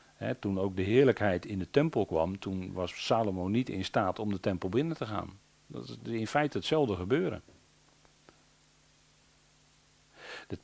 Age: 40-59